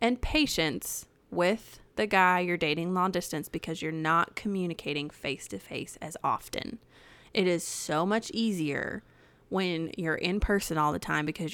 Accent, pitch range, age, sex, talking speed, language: American, 150-180 Hz, 20-39, female, 160 wpm, English